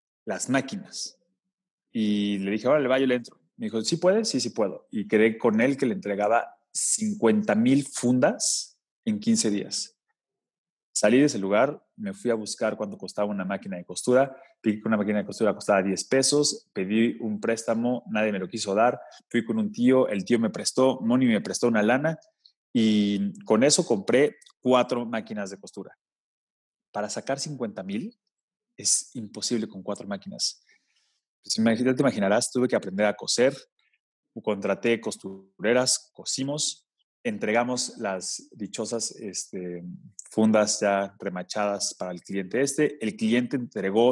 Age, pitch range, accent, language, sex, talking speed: 30-49, 105-135 Hz, Mexican, Spanish, male, 160 wpm